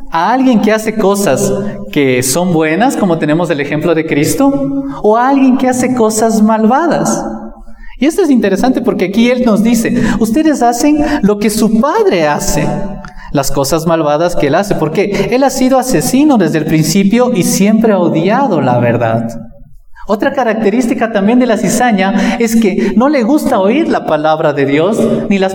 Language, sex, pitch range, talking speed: Spanish, male, 165-245 Hz, 175 wpm